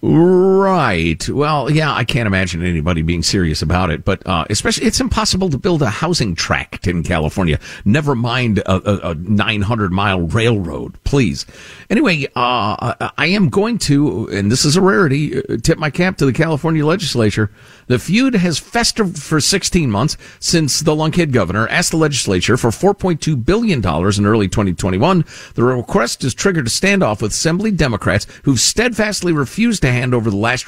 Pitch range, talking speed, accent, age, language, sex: 95-150 Hz, 170 wpm, American, 50-69, English, male